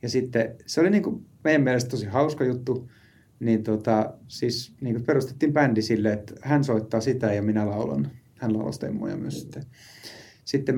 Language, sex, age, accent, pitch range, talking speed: Finnish, male, 30-49, native, 110-135 Hz, 160 wpm